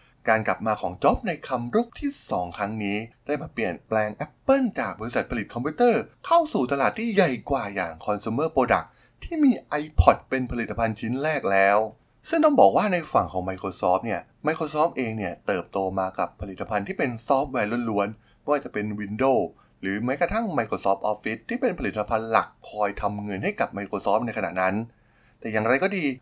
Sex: male